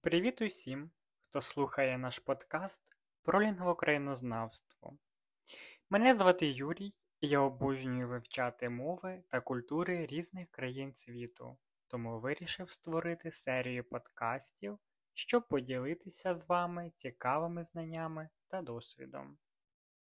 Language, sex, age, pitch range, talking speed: Ukrainian, male, 20-39, 125-170 Hz, 100 wpm